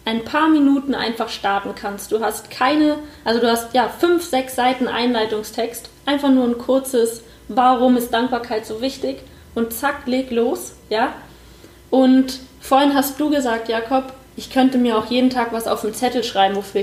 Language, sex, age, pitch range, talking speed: German, female, 20-39, 225-260 Hz, 175 wpm